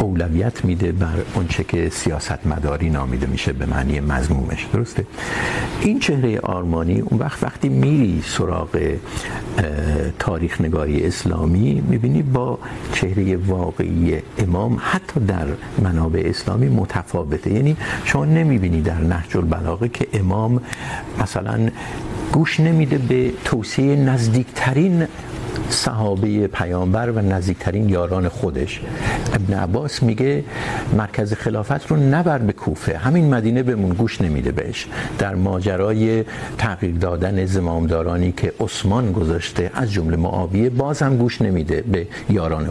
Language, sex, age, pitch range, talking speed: Urdu, male, 60-79, 90-125 Hz, 120 wpm